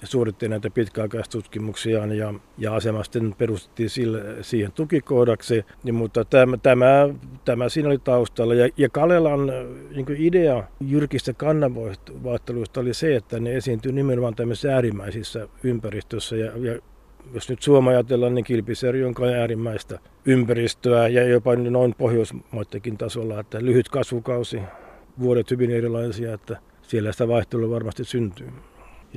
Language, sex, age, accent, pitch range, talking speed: Finnish, male, 50-69, native, 110-125 Hz, 130 wpm